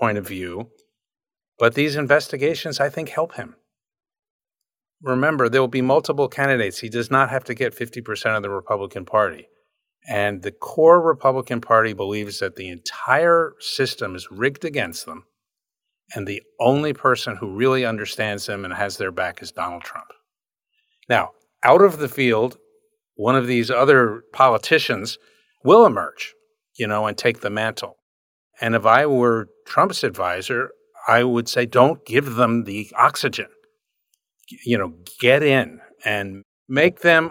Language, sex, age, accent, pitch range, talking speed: English, male, 50-69, American, 115-165 Hz, 155 wpm